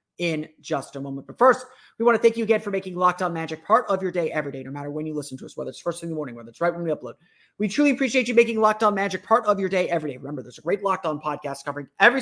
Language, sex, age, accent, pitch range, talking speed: English, male, 30-49, American, 160-225 Hz, 325 wpm